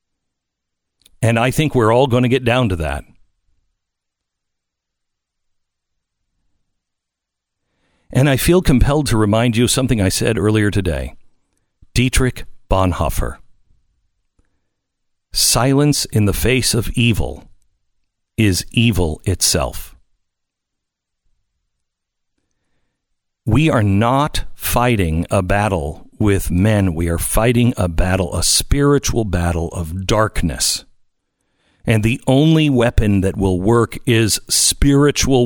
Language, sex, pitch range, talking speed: English, male, 90-125 Hz, 105 wpm